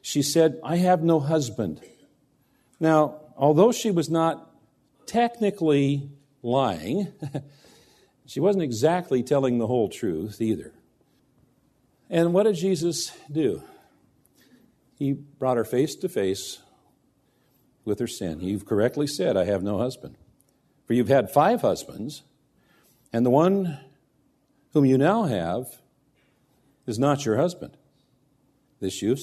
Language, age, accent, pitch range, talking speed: English, 50-69, American, 110-155 Hz, 125 wpm